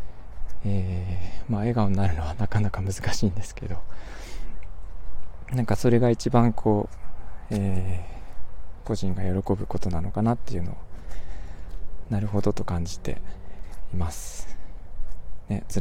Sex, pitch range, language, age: male, 80-110 Hz, Japanese, 20-39